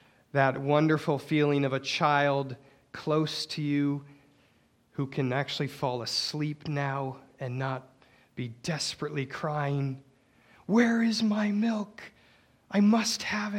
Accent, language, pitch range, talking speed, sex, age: American, English, 130-195 Hz, 120 wpm, male, 30-49